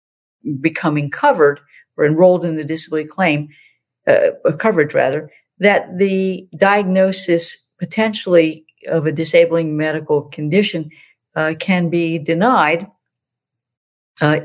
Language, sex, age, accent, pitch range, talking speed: English, female, 50-69, American, 150-190 Hz, 105 wpm